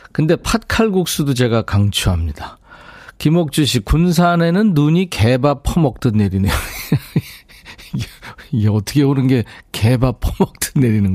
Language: Korean